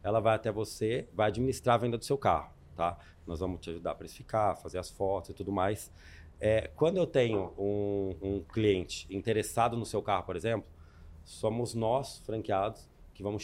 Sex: male